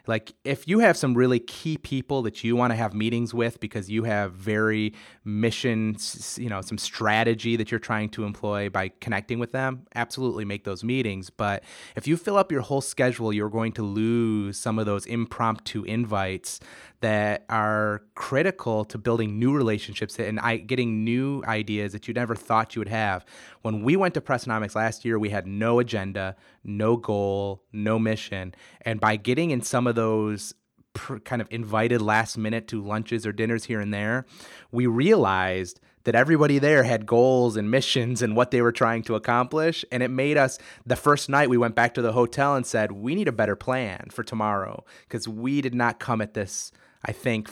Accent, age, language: American, 30-49, English